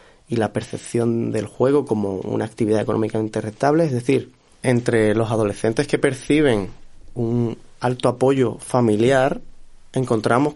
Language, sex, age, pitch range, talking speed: Spanish, male, 30-49, 110-135 Hz, 125 wpm